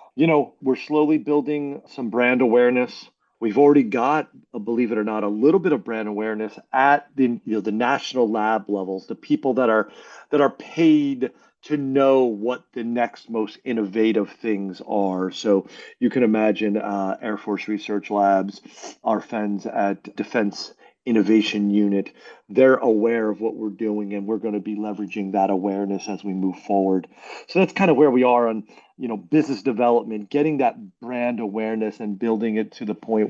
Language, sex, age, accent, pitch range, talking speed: English, male, 40-59, American, 105-145 Hz, 175 wpm